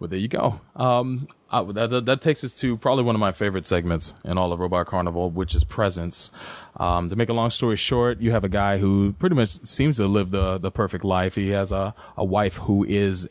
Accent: American